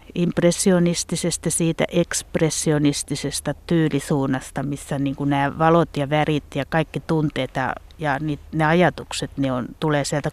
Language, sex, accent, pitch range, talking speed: Finnish, female, native, 145-175 Hz, 120 wpm